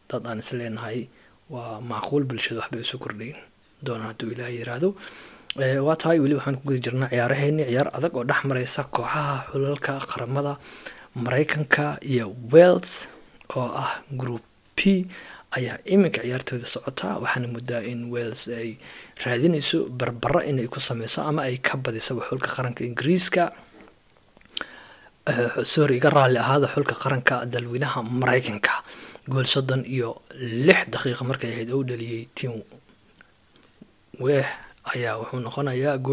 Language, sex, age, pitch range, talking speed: English, male, 20-39, 120-145 Hz, 40 wpm